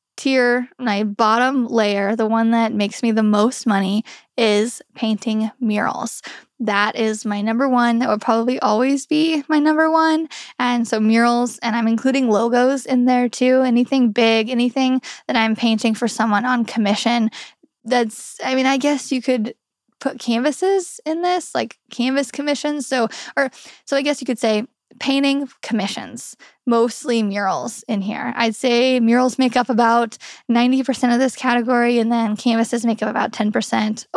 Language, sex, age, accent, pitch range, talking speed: English, female, 10-29, American, 225-260 Hz, 165 wpm